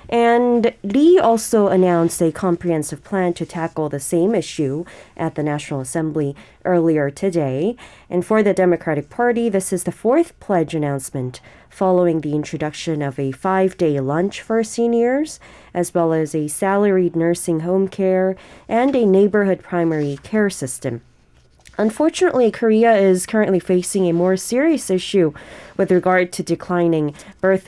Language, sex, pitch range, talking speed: English, female, 160-210 Hz, 145 wpm